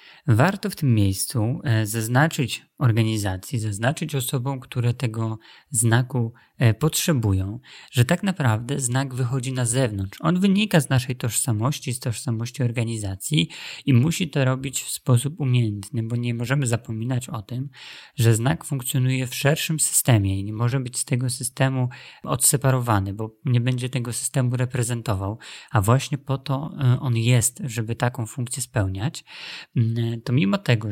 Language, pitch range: Polish, 115-140 Hz